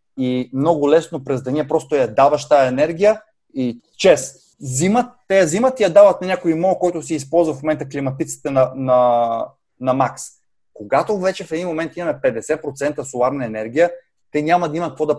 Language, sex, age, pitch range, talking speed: Bulgarian, male, 30-49, 135-170 Hz, 185 wpm